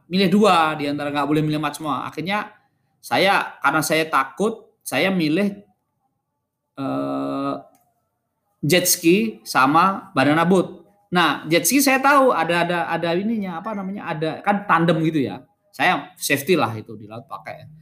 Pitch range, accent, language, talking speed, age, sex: 155-225 Hz, native, Indonesian, 140 wpm, 20-39, male